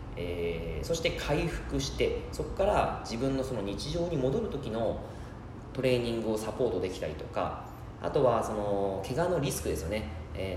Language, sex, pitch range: Japanese, male, 100-155 Hz